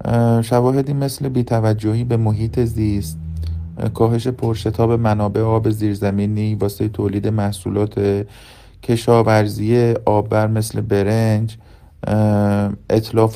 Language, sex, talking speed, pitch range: Persian, male, 85 wpm, 105-115 Hz